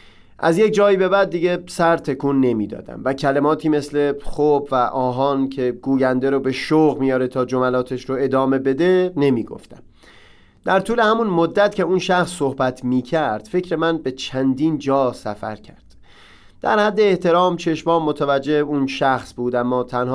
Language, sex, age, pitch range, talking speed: Persian, male, 30-49, 130-180 Hz, 165 wpm